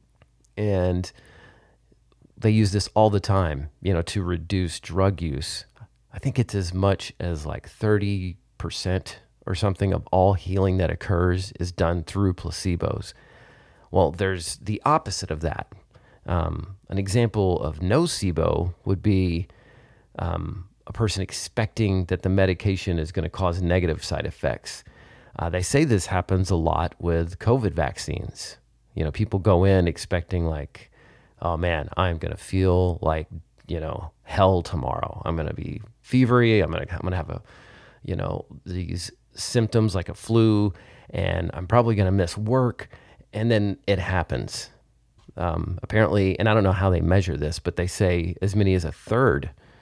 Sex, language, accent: male, English, American